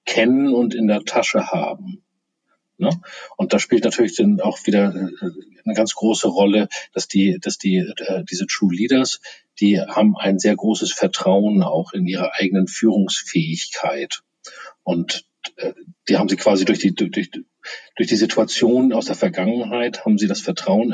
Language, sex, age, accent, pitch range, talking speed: German, male, 40-59, German, 100-130 Hz, 155 wpm